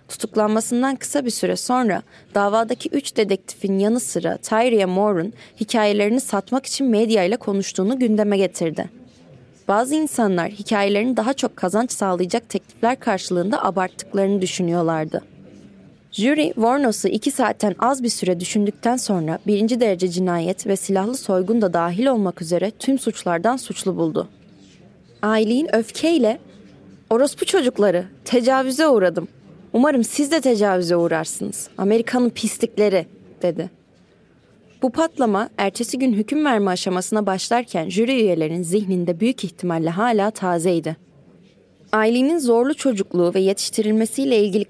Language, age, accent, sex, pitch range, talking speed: Turkish, 20-39, native, female, 190-240 Hz, 120 wpm